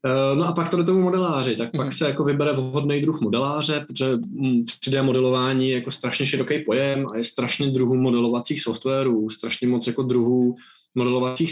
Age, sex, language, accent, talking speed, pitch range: 20-39, male, Czech, native, 170 wpm, 115-140 Hz